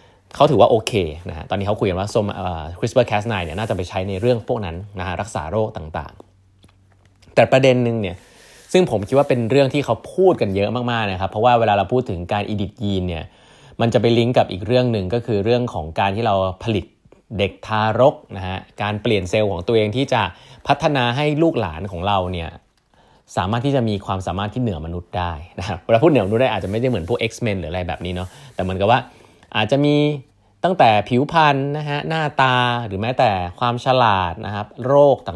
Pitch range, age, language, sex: 95-125 Hz, 20-39, Thai, male